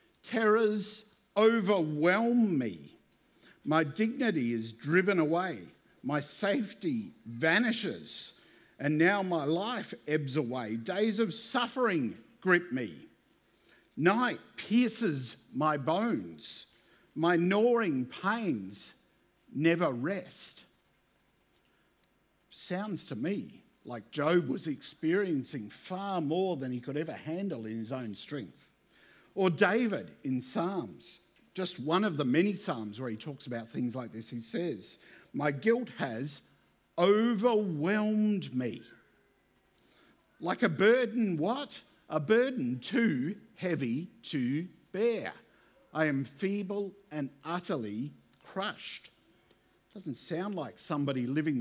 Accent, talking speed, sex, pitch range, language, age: Australian, 110 wpm, male, 140-215 Hz, English, 50-69